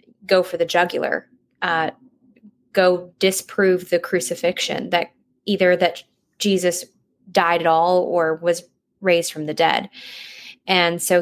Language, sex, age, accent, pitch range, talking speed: English, female, 20-39, American, 175-205 Hz, 130 wpm